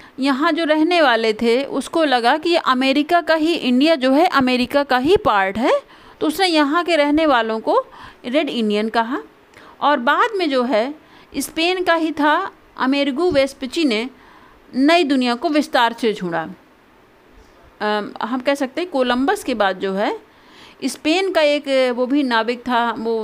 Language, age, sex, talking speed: Hindi, 50-69, female, 165 wpm